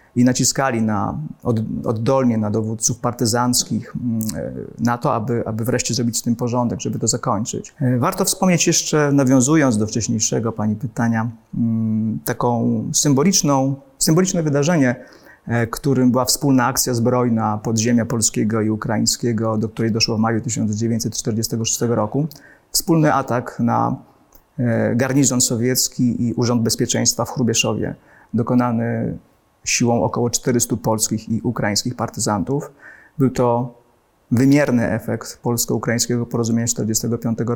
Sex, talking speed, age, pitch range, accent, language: male, 115 wpm, 30-49, 115-125 Hz, native, Polish